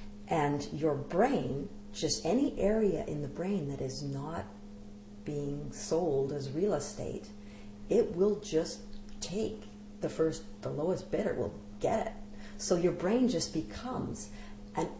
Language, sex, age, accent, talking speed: English, female, 50-69, American, 140 wpm